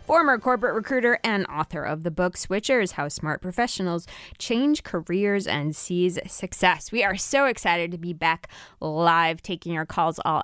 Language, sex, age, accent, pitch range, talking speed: English, female, 20-39, American, 165-205 Hz, 165 wpm